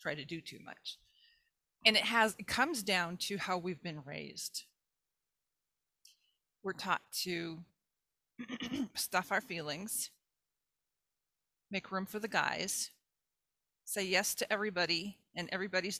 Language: English